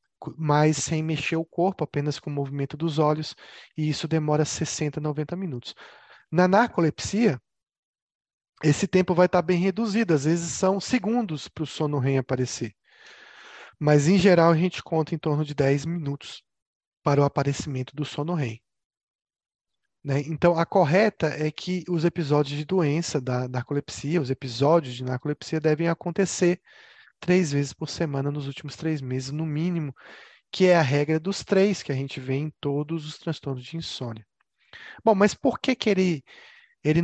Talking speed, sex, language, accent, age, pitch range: 165 wpm, male, Italian, Brazilian, 20-39, 140-175 Hz